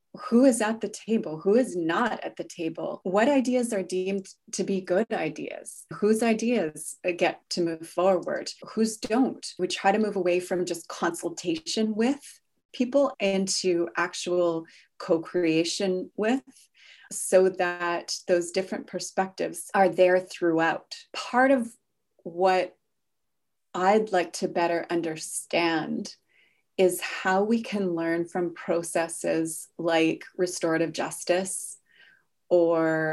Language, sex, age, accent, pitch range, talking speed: English, female, 30-49, American, 170-205 Hz, 125 wpm